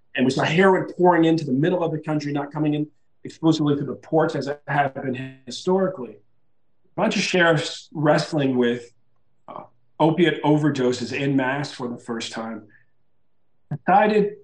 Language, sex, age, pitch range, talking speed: English, male, 40-59, 130-180 Hz, 160 wpm